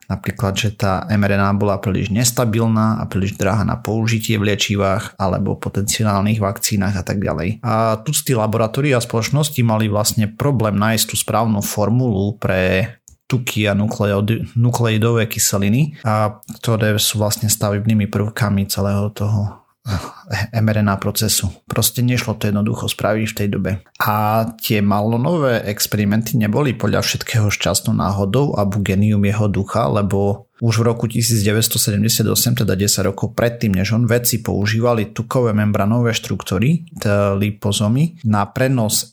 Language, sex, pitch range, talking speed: Slovak, male, 105-120 Hz, 140 wpm